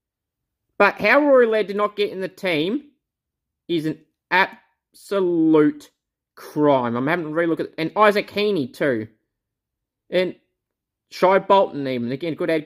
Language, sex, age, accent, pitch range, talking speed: English, male, 30-49, Australian, 145-210 Hz, 150 wpm